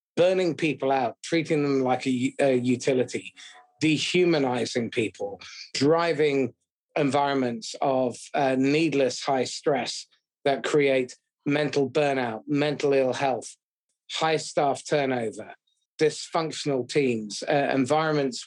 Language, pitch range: English, 130-160 Hz